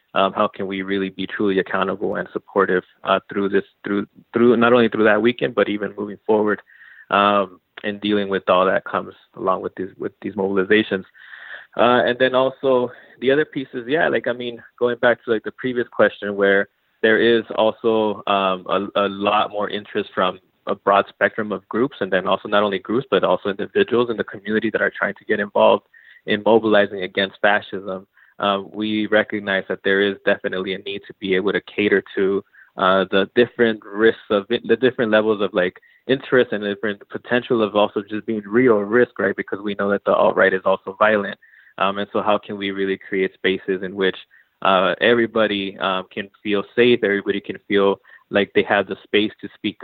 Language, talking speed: English, 200 wpm